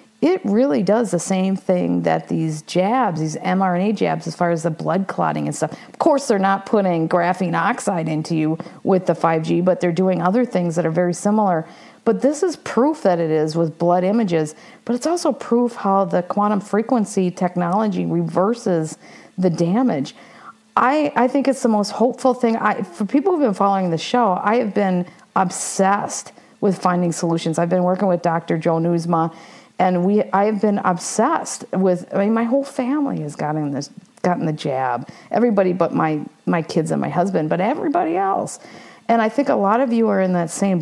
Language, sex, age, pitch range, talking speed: English, female, 50-69, 175-230 Hz, 195 wpm